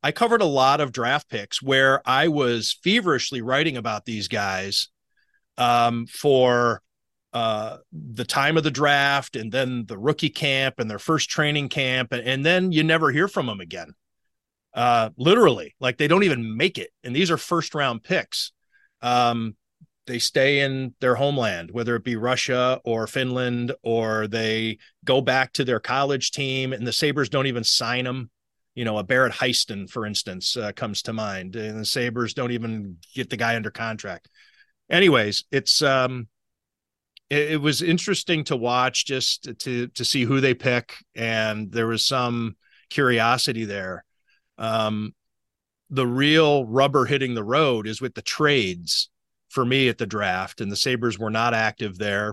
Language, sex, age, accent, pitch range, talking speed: English, male, 40-59, American, 110-135 Hz, 170 wpm